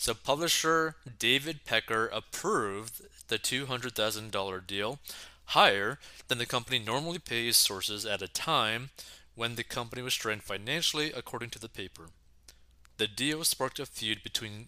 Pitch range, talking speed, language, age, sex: 105-140 Hz, 140 wpm, English, 20-39, male